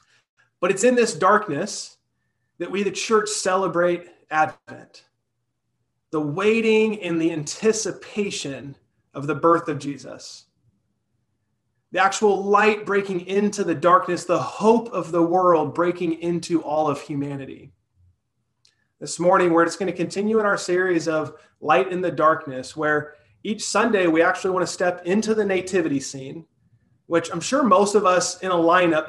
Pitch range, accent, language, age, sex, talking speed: 140-190 Hz, American, English, 30-49, male, 155 wpm